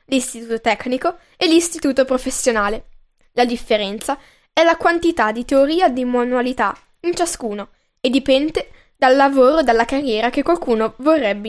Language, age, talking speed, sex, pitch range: Italian, 10-29, 140 wpm, female, 235-305 Hz